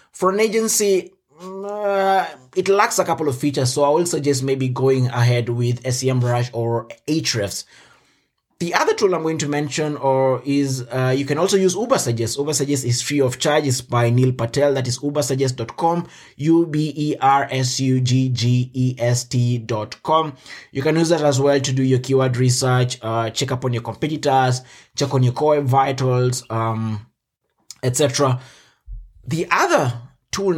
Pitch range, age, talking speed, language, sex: 125-150 Hz, 20-39, 150 wpm, English, male